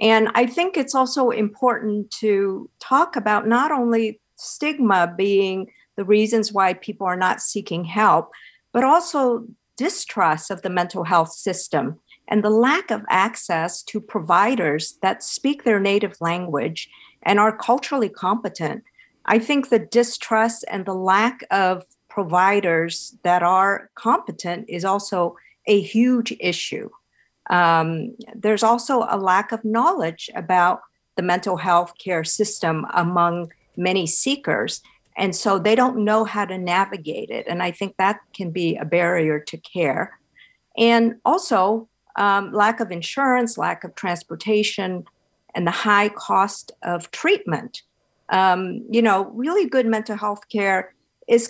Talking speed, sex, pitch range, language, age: 140 wpm, female, 180-230 Hz, English, 50-69